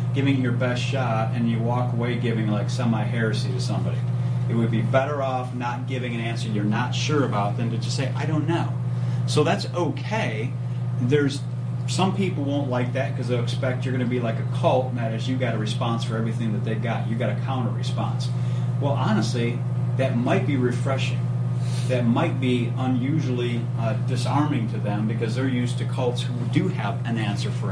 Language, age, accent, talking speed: English, 30-49, American, 205 wpm